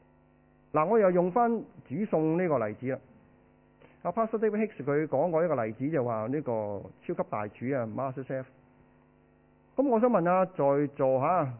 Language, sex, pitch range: Chinese, male, 125-195 Hz